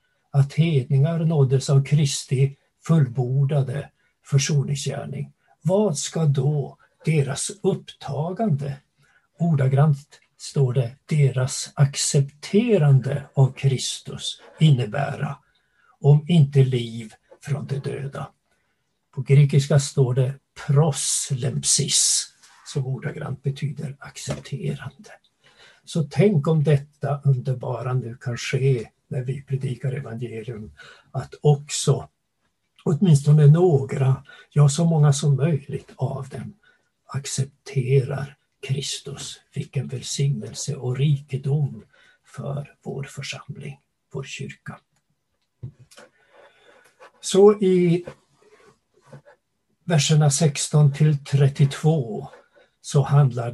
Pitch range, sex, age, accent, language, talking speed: 135-150 Hz, male, 60-79, native, Swedish, 85 wpm